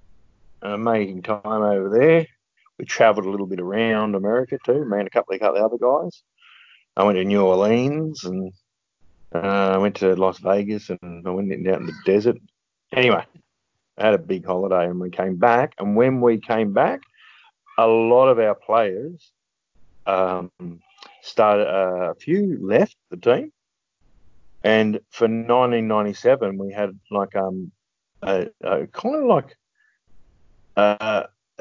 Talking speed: 150 wpm